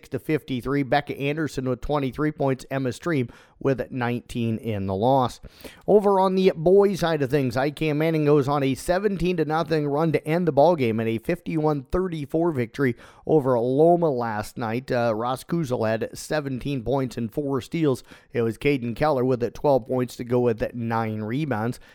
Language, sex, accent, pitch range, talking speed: English, male, American, 120-145 Hz, 180 wpm